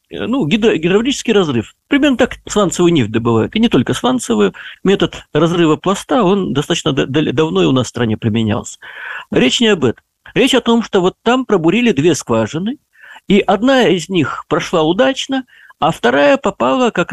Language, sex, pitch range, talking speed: Russian, male, 160-225 Hz, 175 wpm